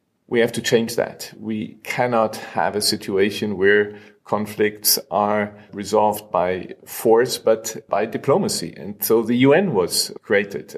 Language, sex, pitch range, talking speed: English, male, 105-115 Hz, 140 wpm